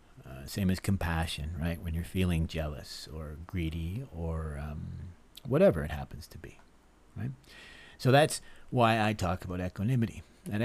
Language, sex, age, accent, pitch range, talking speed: English, male, 40-59, American, 90-115 Hz, 145 wpm